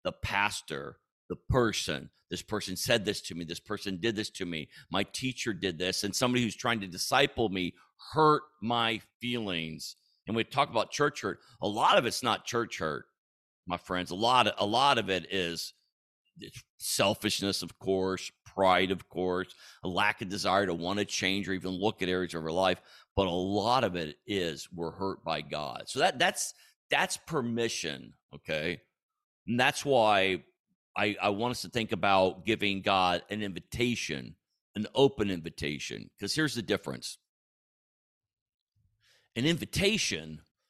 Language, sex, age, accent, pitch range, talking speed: English, male, 50-69, American, 95-115 Hz, 170 wpm